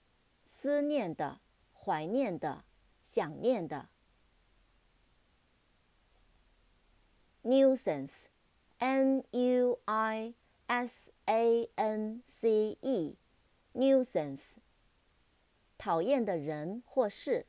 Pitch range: 165-260 Hz